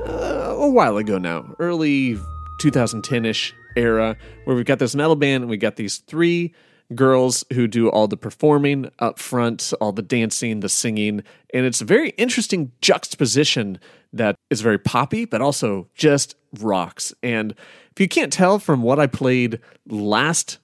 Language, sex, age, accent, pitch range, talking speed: English, male, 30-49, American, 115-155 Hz, 165 wpm